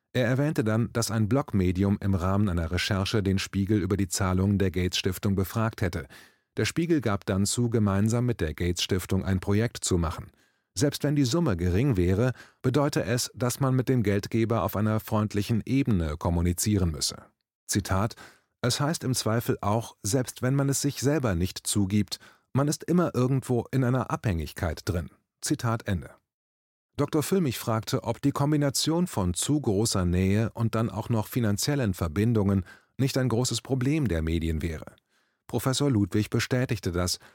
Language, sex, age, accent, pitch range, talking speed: German, male, 30-49, German, 95-125 Hz, 165 wpm